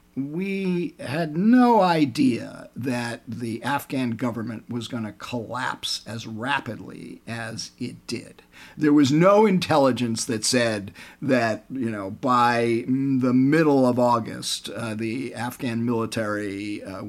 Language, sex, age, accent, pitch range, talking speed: English, male, 50-69, American, 120-200 Hz, 125 wpm